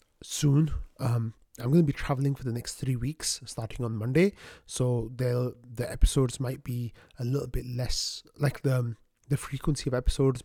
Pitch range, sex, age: 120-135 Hz, male, 30-49